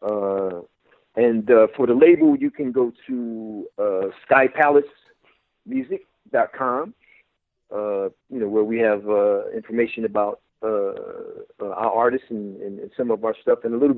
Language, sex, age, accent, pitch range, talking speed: English, male, 50-69, American, 110-150 Hz, 145 wpm